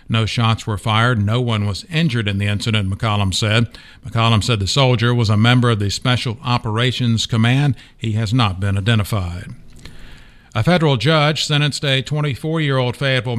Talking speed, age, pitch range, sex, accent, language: 165 wpm, 50-69, 110-130 Hz, male, American, English